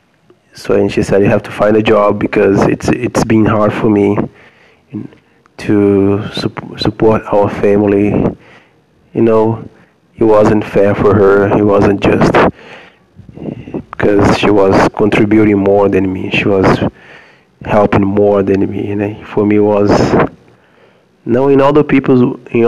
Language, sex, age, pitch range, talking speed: English, male, 20-39, 100-110 Hz, 155 wpm